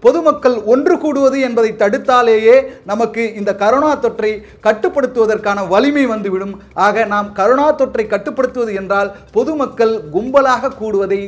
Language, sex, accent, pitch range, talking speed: Tamil, male, native, 195-270 Hz, 110 wpm